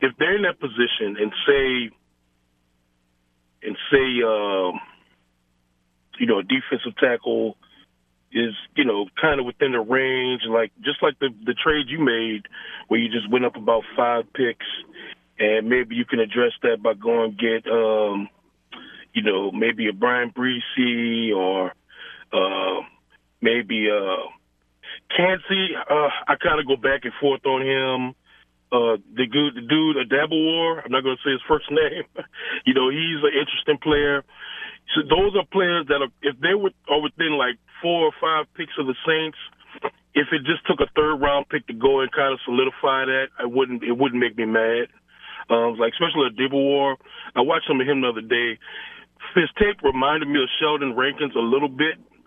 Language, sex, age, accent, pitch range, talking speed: English, male, 30-49, American, 115-145 Hz, 175 wpm